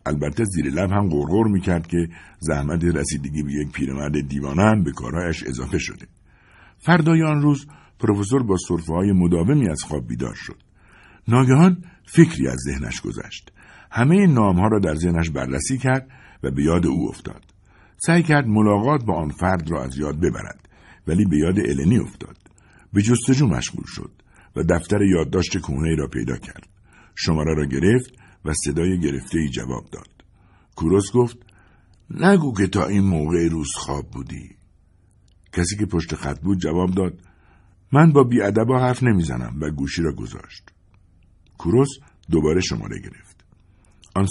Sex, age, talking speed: male, 60-79, 160 wpm